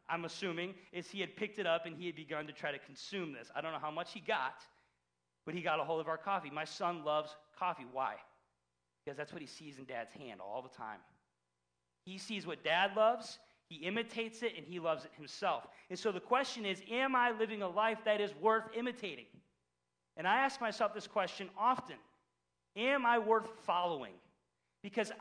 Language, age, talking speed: English, 40-59, 205 wpm